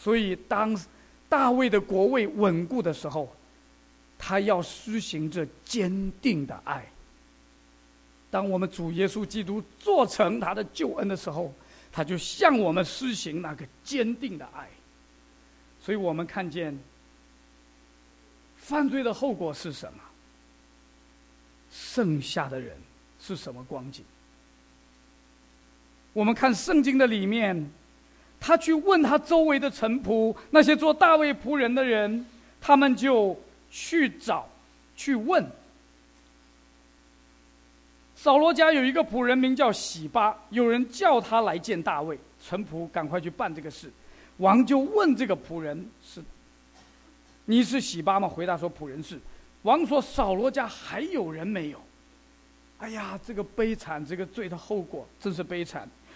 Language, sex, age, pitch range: English, male, 50-69, 155-250 Hz